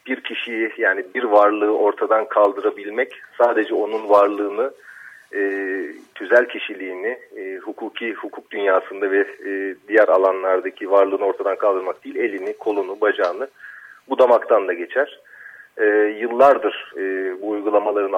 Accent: native